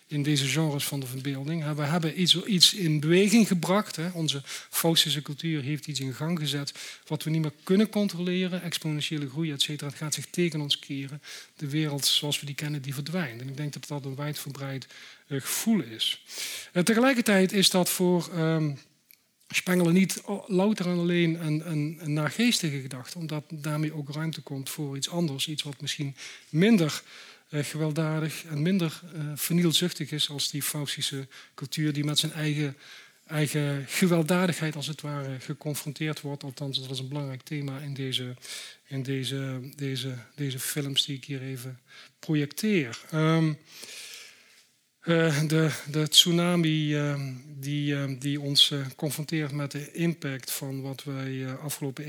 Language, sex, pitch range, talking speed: Dutch, male, 140-165 Hz, 155 wpm